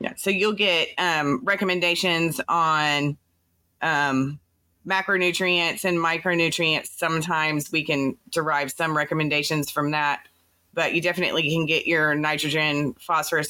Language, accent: English, American